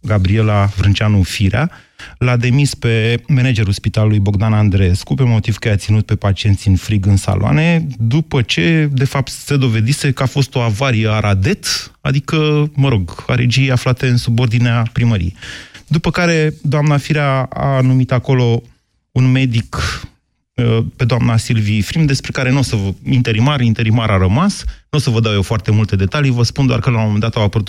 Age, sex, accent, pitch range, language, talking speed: 30-49, male, native, 110-135 Hz, Romanian, 180 wpm